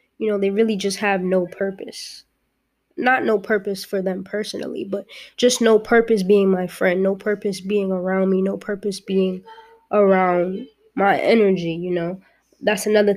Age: 20-39